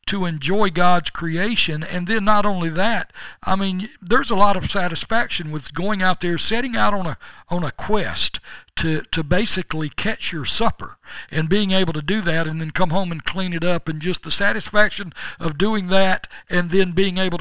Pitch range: 165-200 Hz